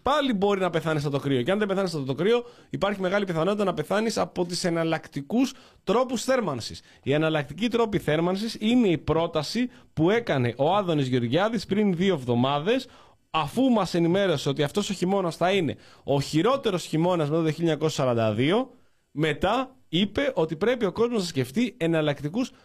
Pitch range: 140-200 Hz